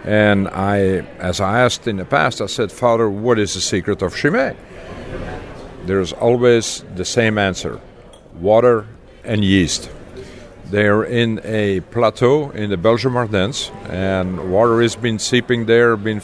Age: 50-69